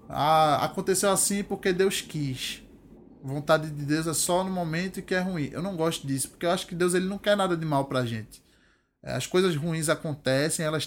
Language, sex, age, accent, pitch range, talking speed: Portuguese, male, 20-39, Brazilian, 135-170 Hz, 220 wpm